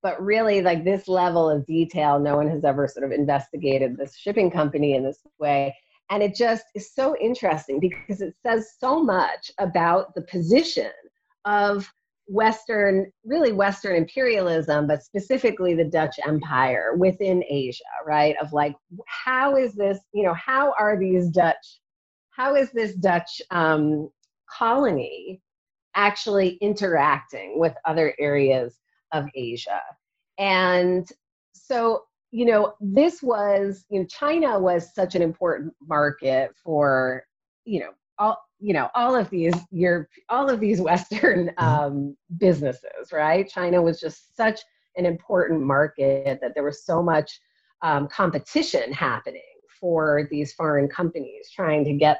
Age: 40-59